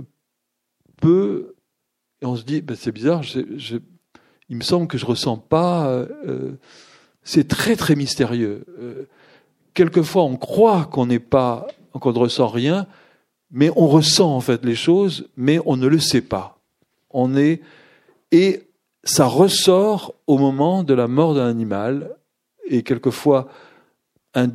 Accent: French